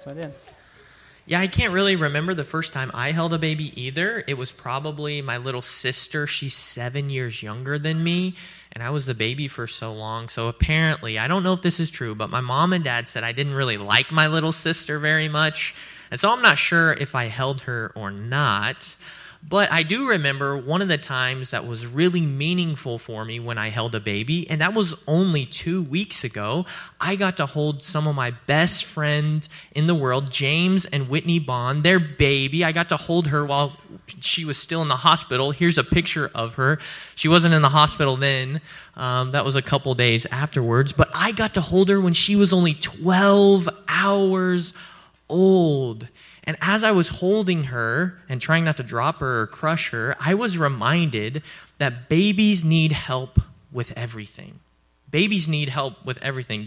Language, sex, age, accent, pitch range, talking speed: English, male, 20-39, American, 125-170 Hz, 195 wpm